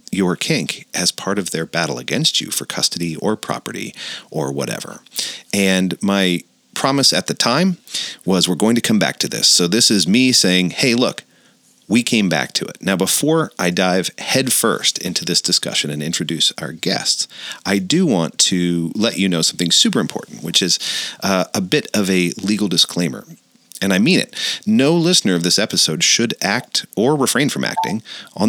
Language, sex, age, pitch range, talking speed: English, male, 40-59, 90-120 Hz, 185 wpm